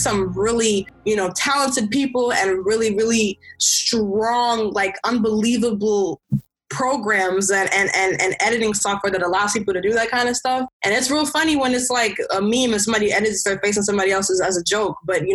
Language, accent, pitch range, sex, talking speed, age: English, American, 195-235 Hz, female, 195 wpm, 20-39